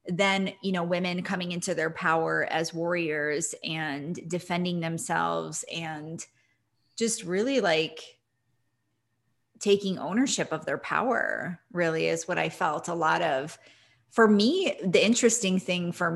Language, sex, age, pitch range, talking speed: English, female, 20-39, 160-190 Hz, 135 wpm